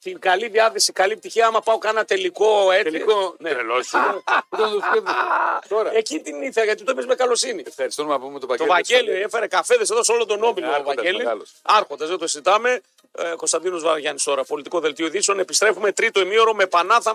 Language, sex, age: Greek, male, 40-59